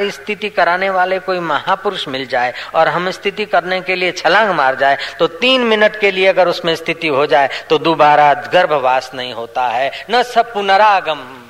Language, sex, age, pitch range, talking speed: Hindi, female, 40-59, 130-165 Hz, 185 wpm